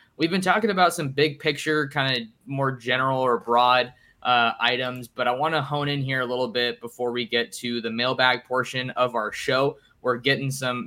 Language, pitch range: English, 120-140 Hz